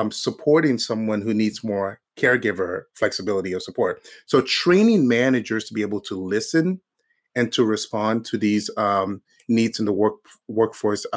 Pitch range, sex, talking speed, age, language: 105-140 Hz, male, 150 wpm, 30-49, English